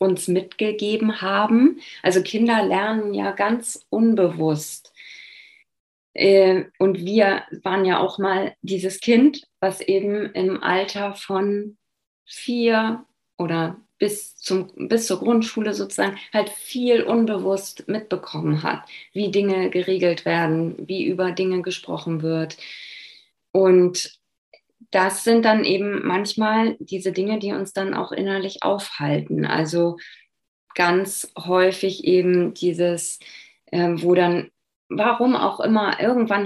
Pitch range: 175-205 Hz